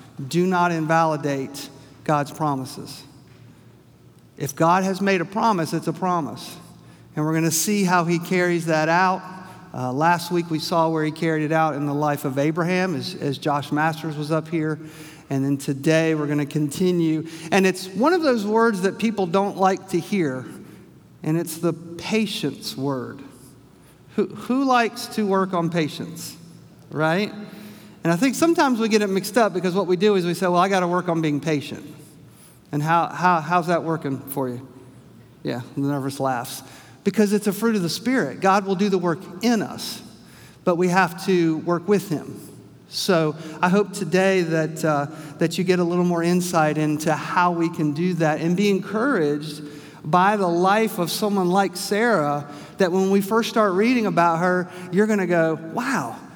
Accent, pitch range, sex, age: American, 150-190 Hz, male, 50-69